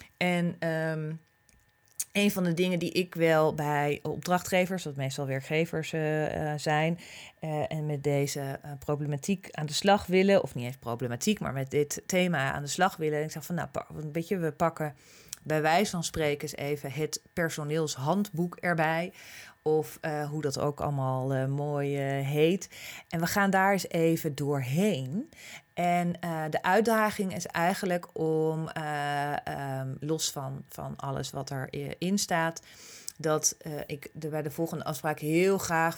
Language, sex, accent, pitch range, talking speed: Dutch, female, Dutch, 145-175 Hz, 165 wpm